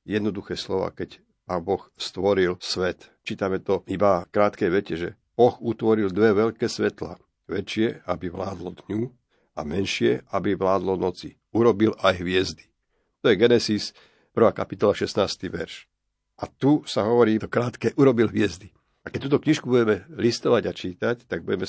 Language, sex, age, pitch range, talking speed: Slovak, male, 50-69, 95-110 Hz, 155 wpm